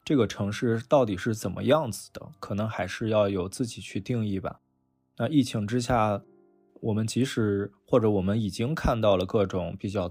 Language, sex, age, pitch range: Chinese, male, 20-39, 100-120 Hz